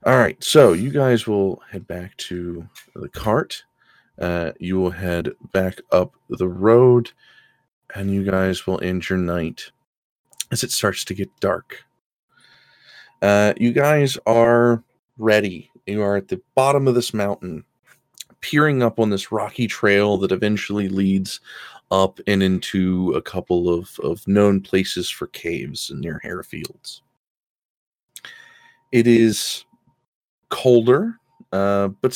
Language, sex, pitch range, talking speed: English, male, 95-135 Hz, 130 wpm